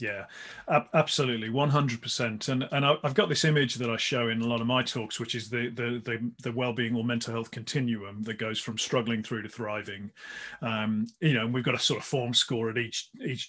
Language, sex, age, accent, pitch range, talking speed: English, male, 40-59, British, 115-145 Hz, 225 wpm